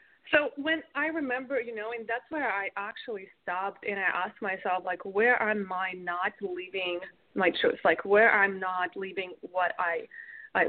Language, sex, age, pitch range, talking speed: English, female, 20-39, 190-260 Hz, 180 wpm